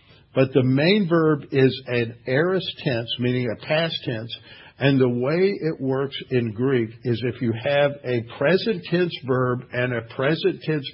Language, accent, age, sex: English, American, 60-79, male